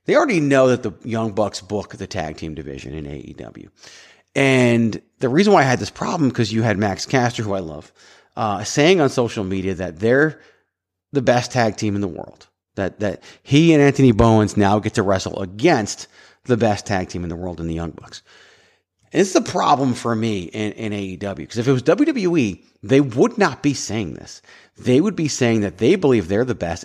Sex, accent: male, American